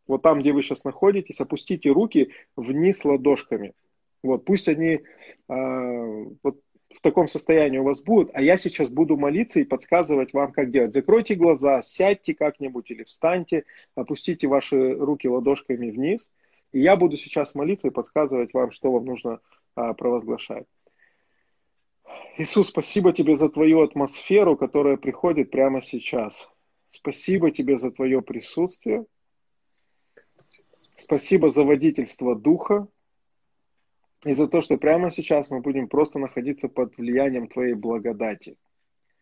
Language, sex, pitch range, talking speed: Russian, male, 130-165 Hz, 135 wpm